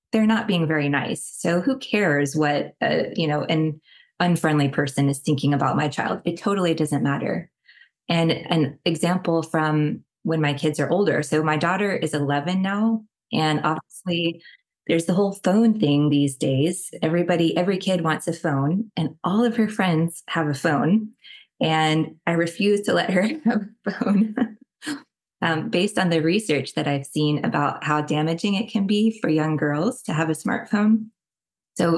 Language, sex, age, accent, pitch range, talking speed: English, female, 20-39, American, 155-205 Hz, 175 wpm